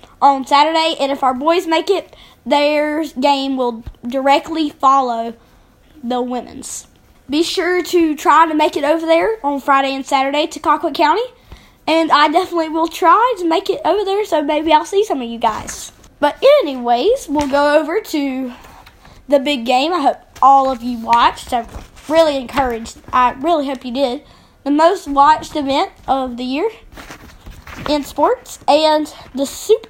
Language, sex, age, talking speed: English, female, 20-39, 170 wpm